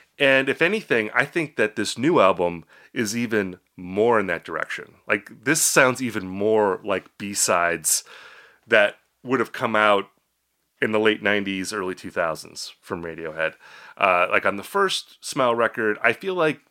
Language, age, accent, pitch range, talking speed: English, 30-49, American, 100-135 Hz, 160 wpm